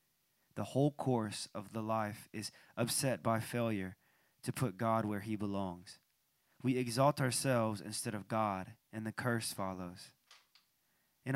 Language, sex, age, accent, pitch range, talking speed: English, male, 20-39, American, 110-130 Hz, 145 wpm